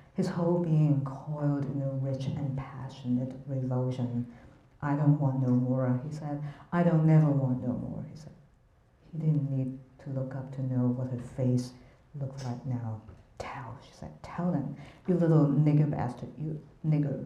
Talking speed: 175 wpm